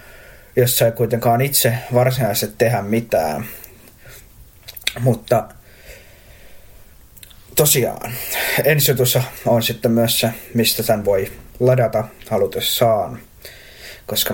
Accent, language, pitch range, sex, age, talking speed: native, Finnish, 115-130 Hz, male, 20-39, 85 wpm